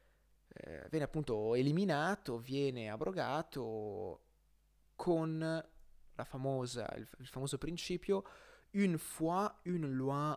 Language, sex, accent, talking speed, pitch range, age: Italian, male, native, 80 wpm, 120-190 Hz, 30-49